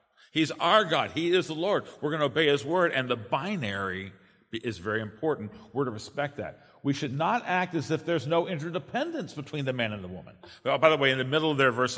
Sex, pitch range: male, 115-165 Hz